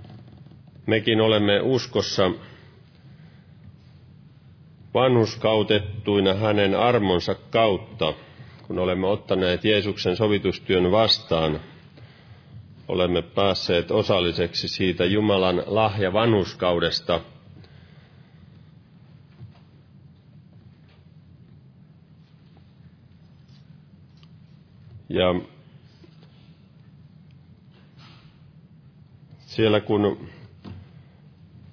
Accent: native